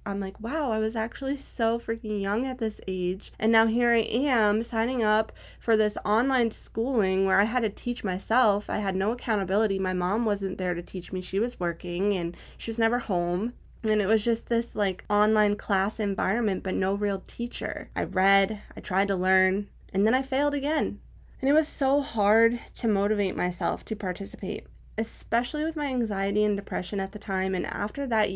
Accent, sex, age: American, female, 20-39